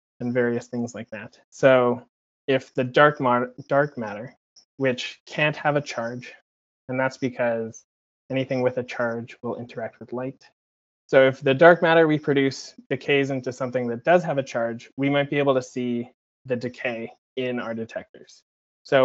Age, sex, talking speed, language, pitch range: 20-39, male, 170 wpm, English, 120-140 Hz